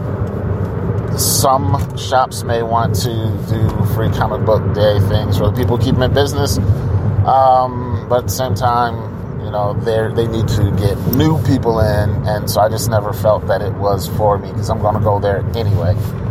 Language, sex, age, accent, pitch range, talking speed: English, male, 30-49, American, 100-120 Hz, 190 wpm